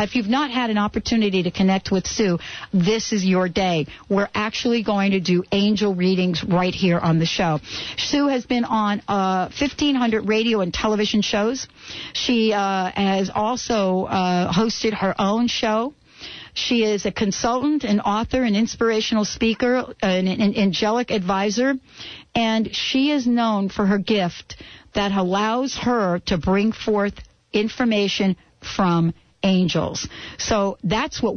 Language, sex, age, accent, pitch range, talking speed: English, female, 50-69, American, 190-235 Hz, 145 wpm